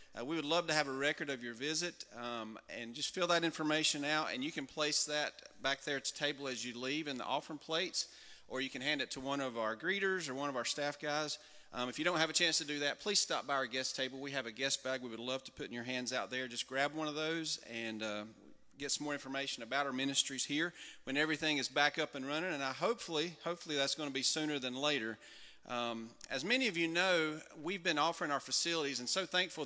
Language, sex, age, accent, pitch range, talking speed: English, male, 40-59, American, 130-155 Hz, 260 wpm